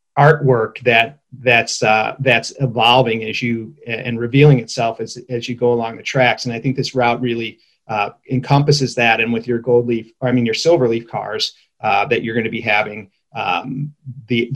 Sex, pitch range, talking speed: male, 120-140 Hz, 200 wpm